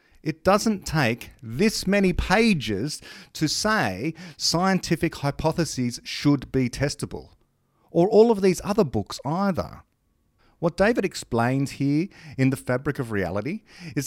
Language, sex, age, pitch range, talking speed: English, male, 40-59, 115-160 Hz, 130 wpm